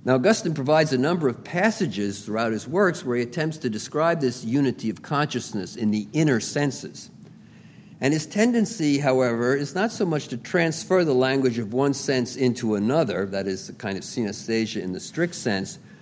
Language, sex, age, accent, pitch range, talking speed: English, male, 50-69, American, 110-145 Hz, 185 wpm